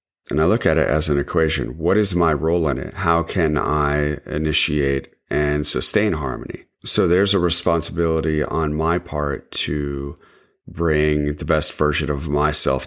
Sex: male